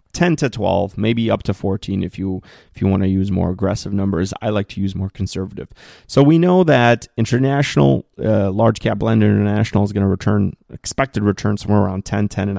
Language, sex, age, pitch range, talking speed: English, male, 30-49, 95-120 Hz, 210 wpm